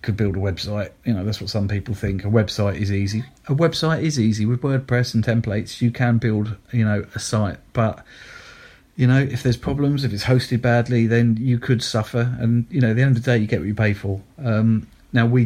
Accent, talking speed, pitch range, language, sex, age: British, 235 wpm, 105-120 Hz, English, male, 40-59